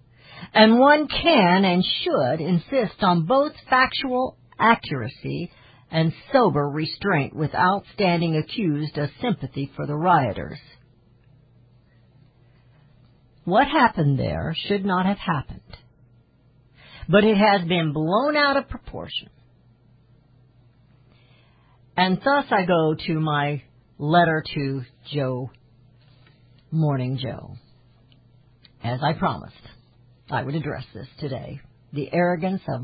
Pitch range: 125-185 Hz